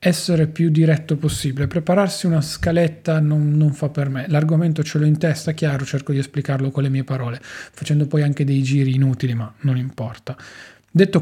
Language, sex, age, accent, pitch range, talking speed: Italian, male, 20-39, native, 140-155 Hz, 185 wpm